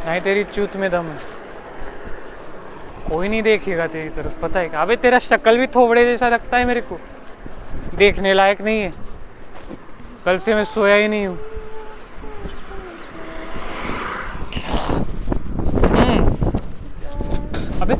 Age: 30-49